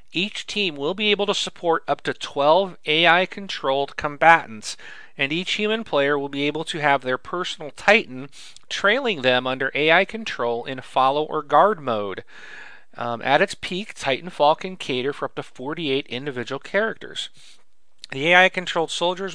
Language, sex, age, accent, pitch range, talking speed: English, male, 40-59, American, 135-180 Hz, 155 wpm